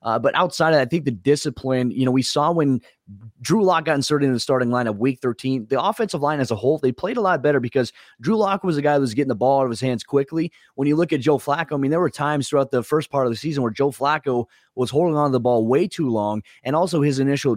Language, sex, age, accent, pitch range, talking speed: English, male, 30-49, American, 120-145 Hz, 295 wpm